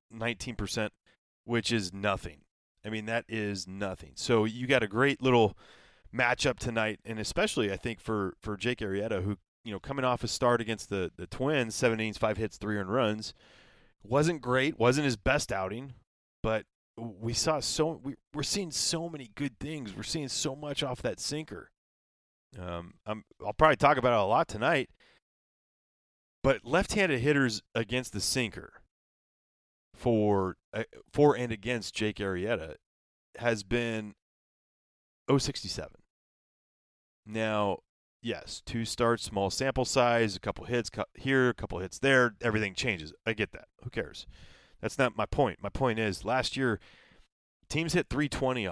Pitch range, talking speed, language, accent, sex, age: 105-135 Hz, 155 wpm, English, American, male, 30-49